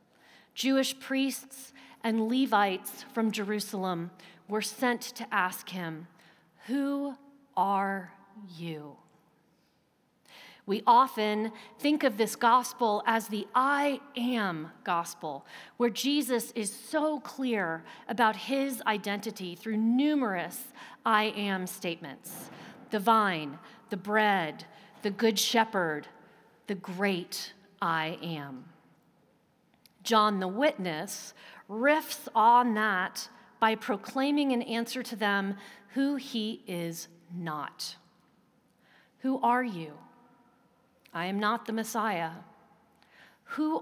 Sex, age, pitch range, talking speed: female, 40-59, 190-245 Hz, 100 wpm